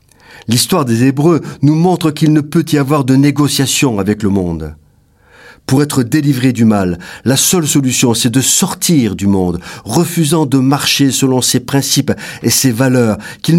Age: 50-69